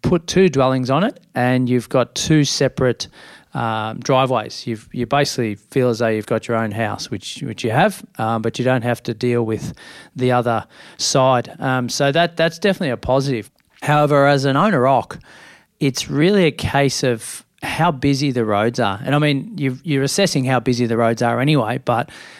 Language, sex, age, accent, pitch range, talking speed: English, male, 40-59, Australian, 120-140 Hz, 195 wpm